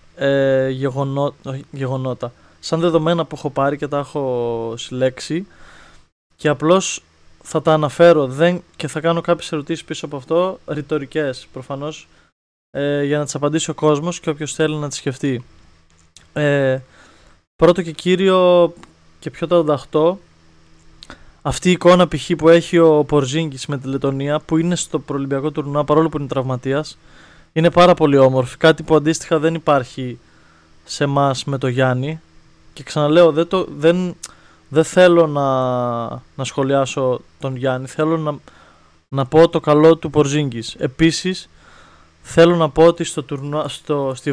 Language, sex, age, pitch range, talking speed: Greek, male, 20-39, 130-160 Hz, 140 wpm